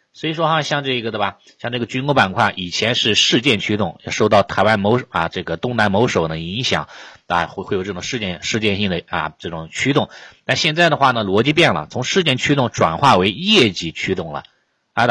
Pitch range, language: 95-125 Hz, Chinese